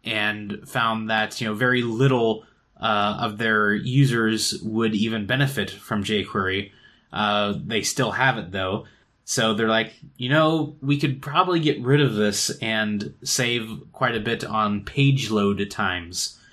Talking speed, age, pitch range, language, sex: 160 wpm, 20-39, 105-130 Hz, English, male